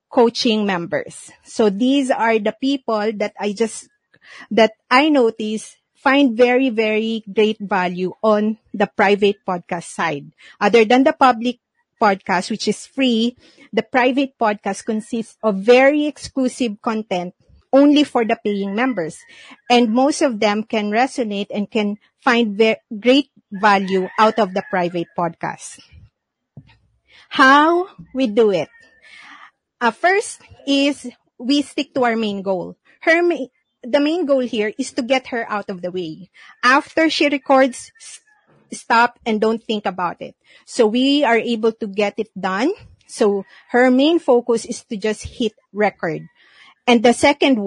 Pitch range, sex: 210-265 Hz, female